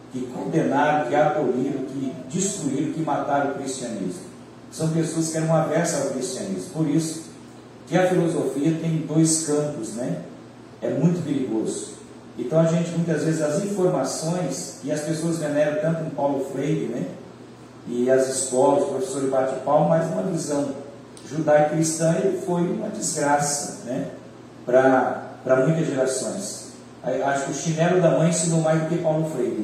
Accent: Brazilian